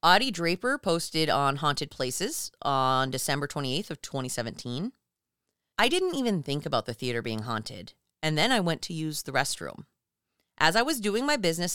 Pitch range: 135-195 Hz